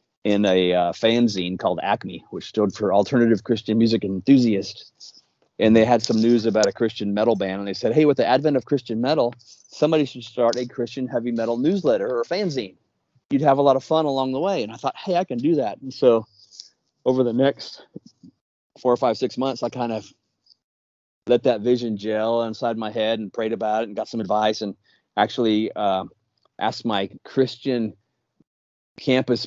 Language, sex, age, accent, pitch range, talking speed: English, male, 30-49, American, 105-125 Hz, 195 wpm